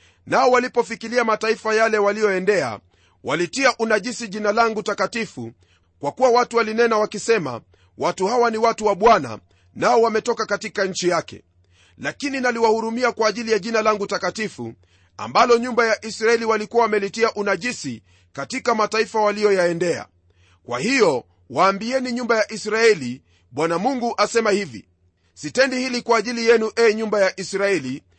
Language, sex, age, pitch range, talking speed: Swahili, male, 40-59, 165-235 Hz, 135 wpm